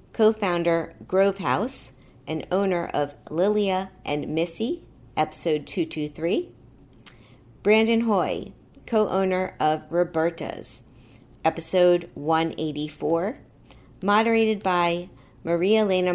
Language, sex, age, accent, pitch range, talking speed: English, female, 50-69, American, 140-185 Hz, 90 wpm